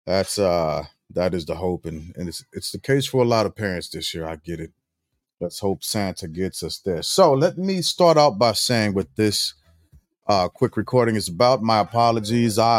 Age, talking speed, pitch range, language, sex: 30-49, 205 wpm, 85-115 Hz, English, male